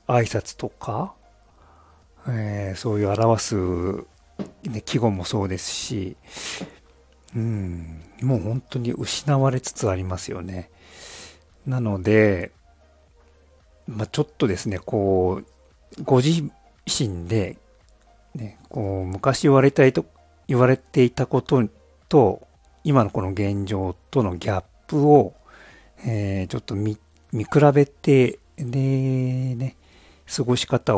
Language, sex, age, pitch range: Japanese, male, 50-69, 90-125 Hz